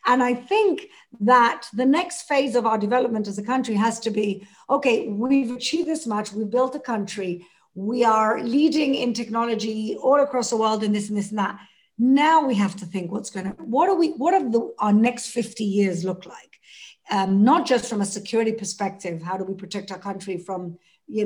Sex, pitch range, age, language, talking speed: female, 205-275 Hz, 50-69, English, 205 wpm